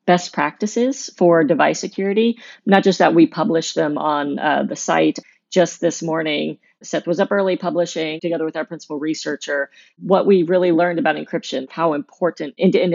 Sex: female